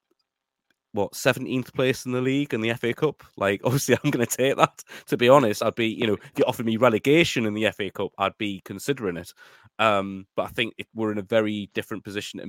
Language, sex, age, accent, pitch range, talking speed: English, male, 20-39, British, 95-110 Hz, 230 wpm